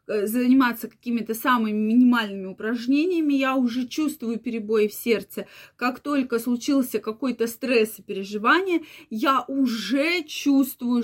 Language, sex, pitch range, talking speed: Russian, female, 220-280 Hz, 115 wpm